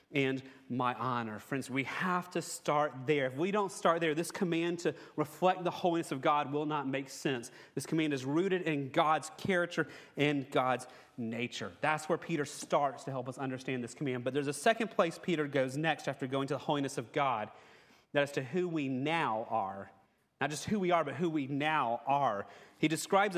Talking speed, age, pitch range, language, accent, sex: 205 wpm, 30-49, 135-170 Hz, English, American, male